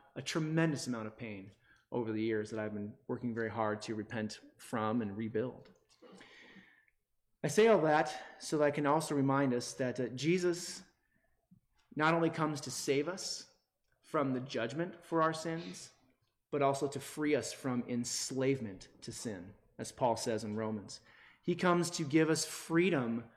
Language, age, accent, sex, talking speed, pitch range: English, 30-49, American, male, 165 wpm, 125-165 Hz